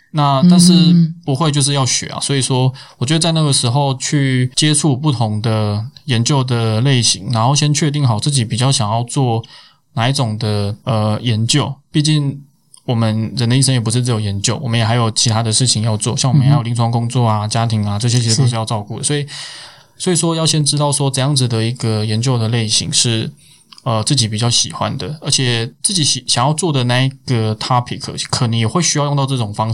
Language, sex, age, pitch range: Chinese, male, 20-39, 115-145 Hz